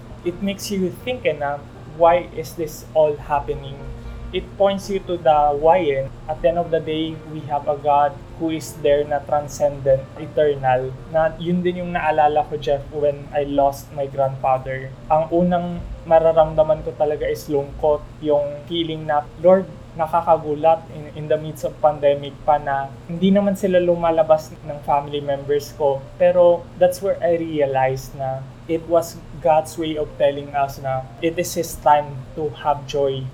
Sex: male